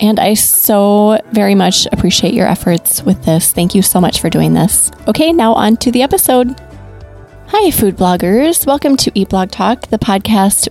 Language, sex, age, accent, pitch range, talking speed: English, female, 20-39, American, 185-225 Hz, 185 wpm